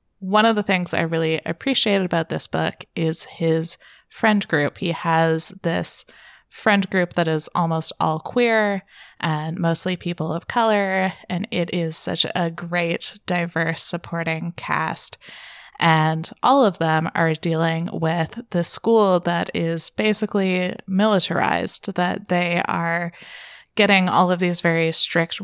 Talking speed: 140 wpm